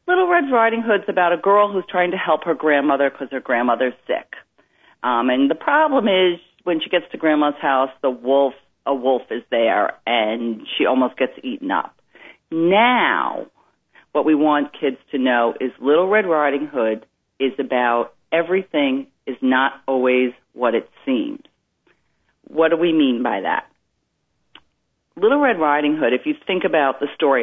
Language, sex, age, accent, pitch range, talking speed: English, female, 40-59, American, 145-225 Hz, 170 wpm